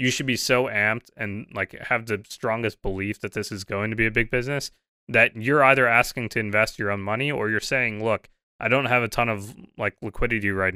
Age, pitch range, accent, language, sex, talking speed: 20-39, 100-125 Hz, American, English, male, 235 wpm